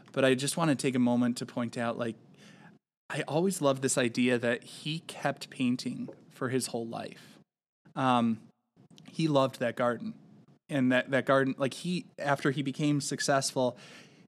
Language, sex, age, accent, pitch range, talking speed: English, male, 20-39, American, 125-155 Hz, 170 wpm